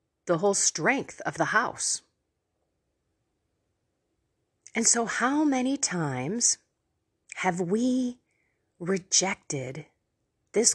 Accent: American